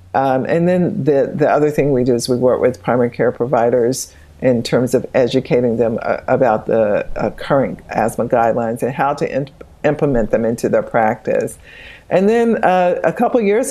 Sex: female